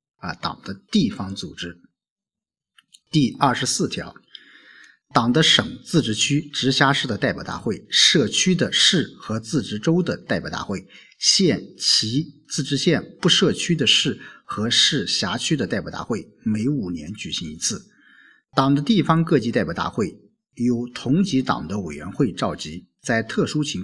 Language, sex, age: Chinese, male, 50-69